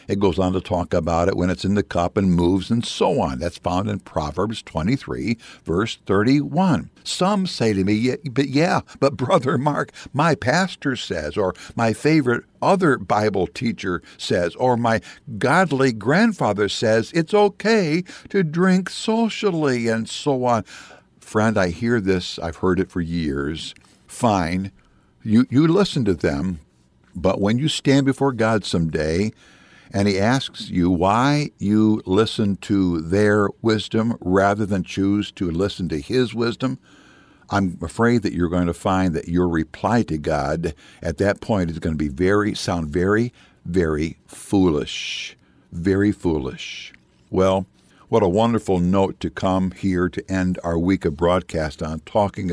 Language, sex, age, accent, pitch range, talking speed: English, male, 60-79, American, 90-120 Hz, 160 wpm